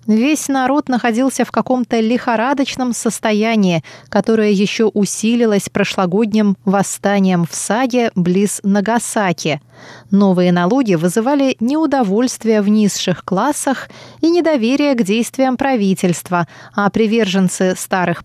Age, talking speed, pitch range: 20-39, 100 wpm, 185-250 Hz